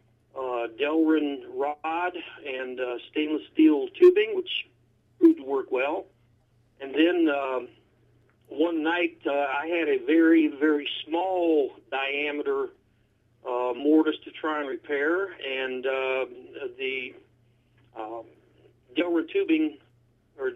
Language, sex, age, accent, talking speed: English, male, 40-59, American, 115 wpm